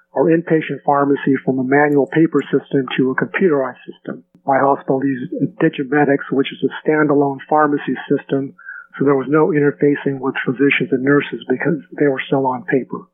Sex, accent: male, American